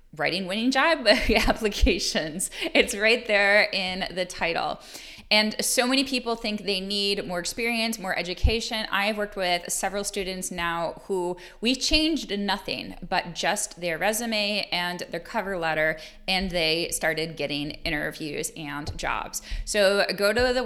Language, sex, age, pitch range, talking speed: English, female, 20-39, 175-235 Hz, 145 wpm